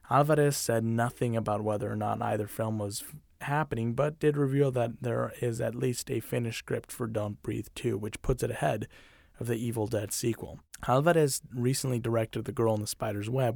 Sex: male